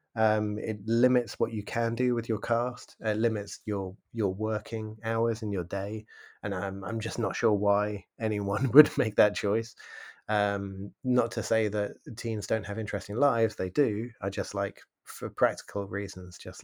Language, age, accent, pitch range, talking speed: English, 20-39, British, 105-125 Hz, 180 wpm